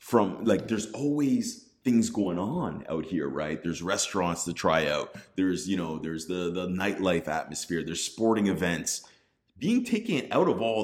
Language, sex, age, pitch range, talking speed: English, male, 30-49, 90-125 Hz, 170 wpm